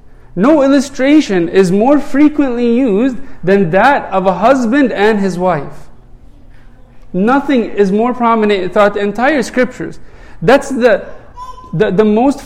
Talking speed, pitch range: 130 wpm, 185-240 Hz